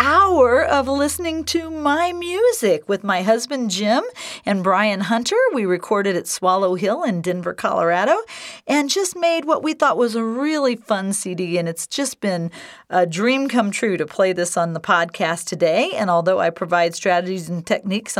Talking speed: 180 wpm